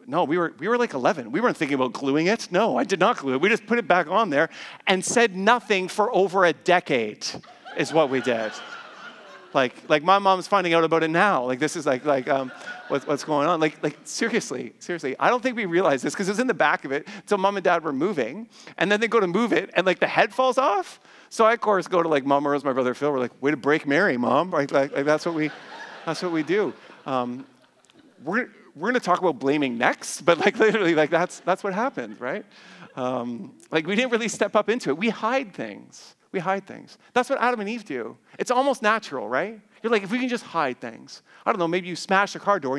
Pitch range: 145-215 Hz